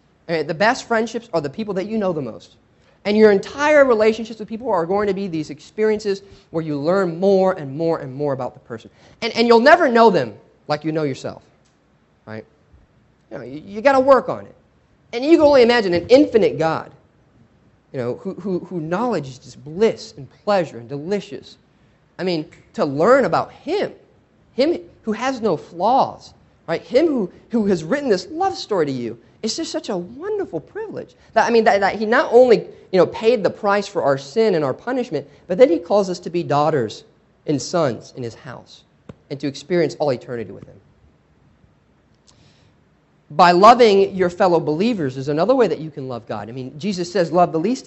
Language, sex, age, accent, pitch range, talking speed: English, male, 30-49, American, 150-235 Hz, 200 wpm